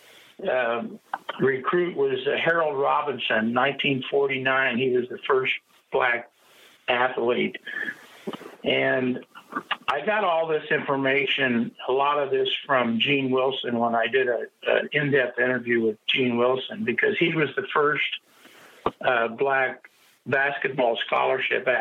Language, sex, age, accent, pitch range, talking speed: English, male, 60-79, American, 130-165 Hz, 125 wpm